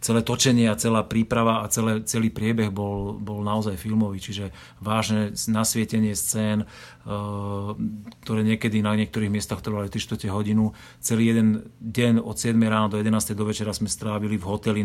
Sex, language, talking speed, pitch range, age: male, Slovak, 160 wpm, 105-110 Hz, 30-49